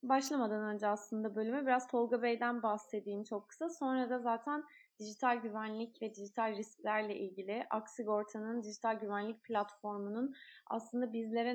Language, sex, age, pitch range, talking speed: Turkish, female, 20-39, 210-275 Hz, 130 wpm